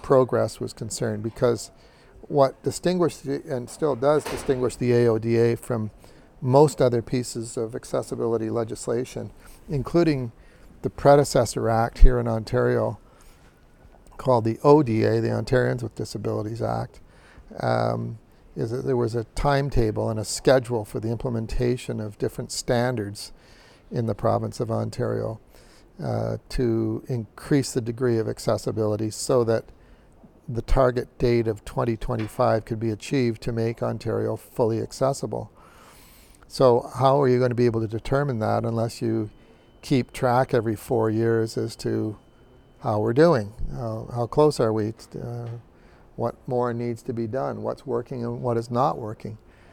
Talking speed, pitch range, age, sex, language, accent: 145 wpm, 110-125 Hz, 50-69, male, English, American